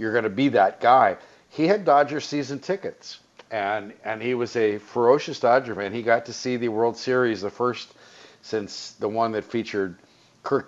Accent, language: American, English